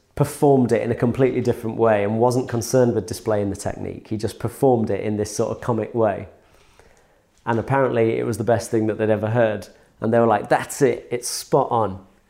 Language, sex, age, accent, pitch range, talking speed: English, male, 30-49, British, 110-130 Hz, 215 wpm